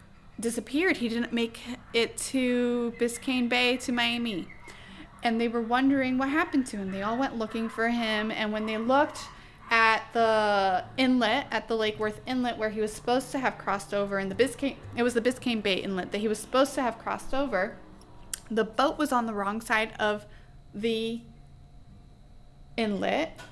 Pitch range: 205-245 Hz